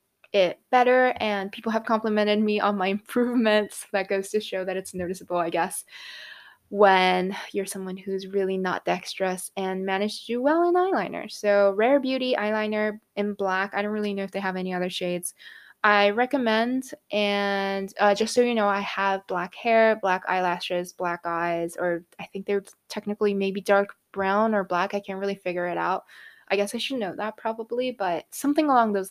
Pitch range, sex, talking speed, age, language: 190-235 Hz, female, 190 wpm, 20-39, English